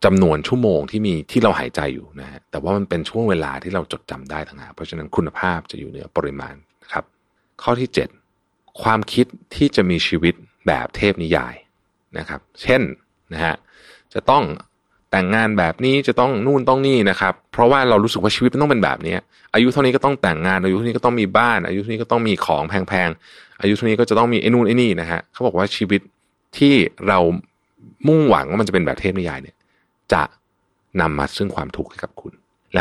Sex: male